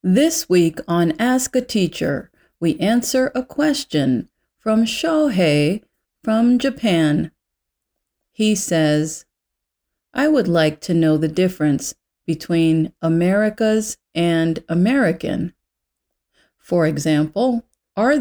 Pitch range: 160-245 Hz